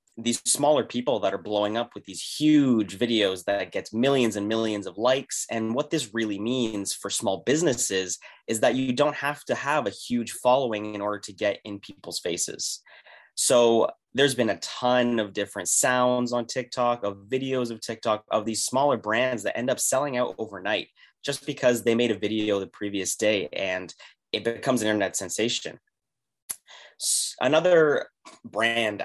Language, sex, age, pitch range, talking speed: English, male, 20-39, 100-125 Hz, 175 wpm